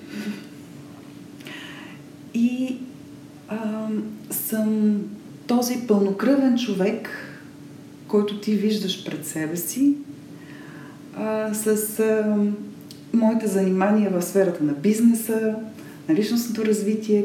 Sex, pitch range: female, 190-240 Hz